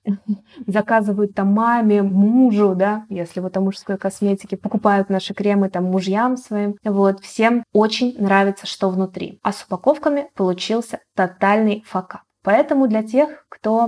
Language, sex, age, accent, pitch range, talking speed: Russian, female, 20-39, native, 190-225 Hz, 140 wpm